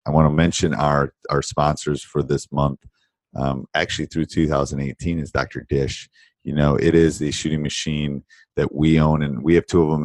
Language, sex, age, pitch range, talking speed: English, male, 40-59, 75-100 Hz, 195 wpm